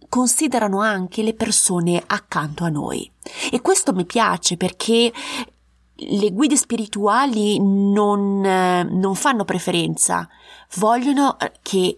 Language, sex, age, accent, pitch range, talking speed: Italian, female, 20-39, native, 170-225 Hz, 105 wpm